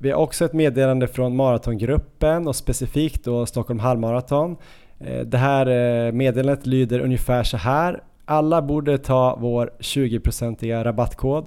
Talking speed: 130 wpm